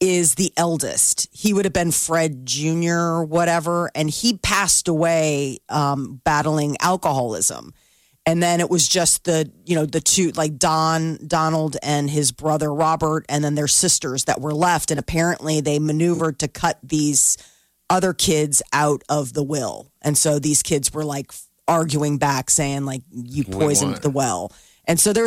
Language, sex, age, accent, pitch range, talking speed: English, female, 30-49, American, 150-180 Hz, 170 wpm